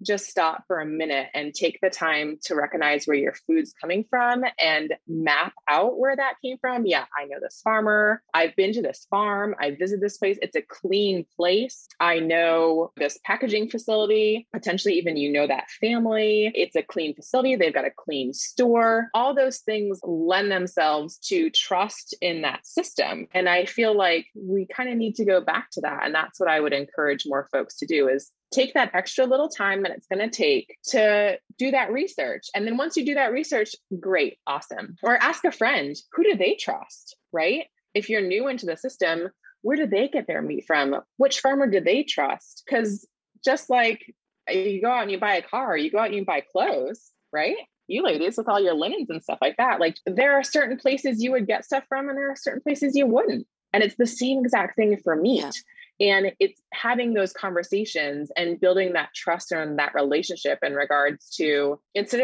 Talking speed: 205 wpm